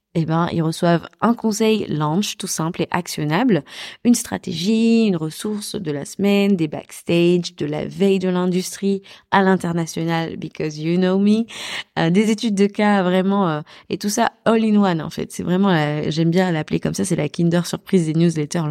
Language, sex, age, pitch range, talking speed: French, female, 20-39, 165-200 Hz, 190 wpm